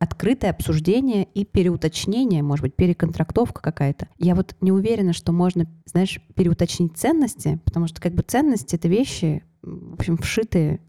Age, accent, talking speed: 20-39, native, 150 wpm